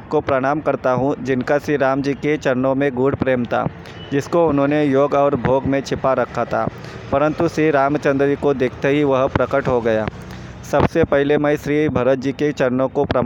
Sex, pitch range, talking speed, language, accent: male, 130-145 Hz, 195 wpm, Hindi, native